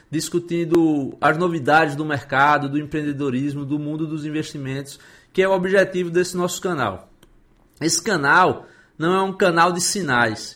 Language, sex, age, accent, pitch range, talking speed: Portuguese, male, 20-39, Brazilian, 145-175 Hz, 150 wpm